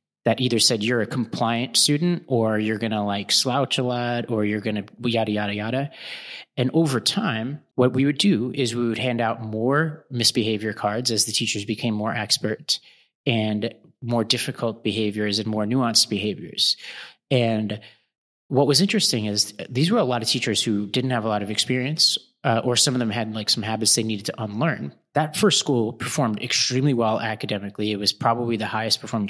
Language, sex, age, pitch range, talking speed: English, male, 30-49, 110-125 Hz, 195 wpm